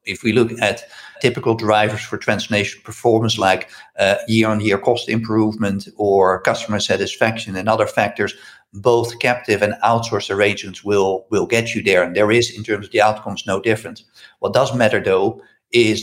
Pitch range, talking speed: 105-120 Hz, 170 wpm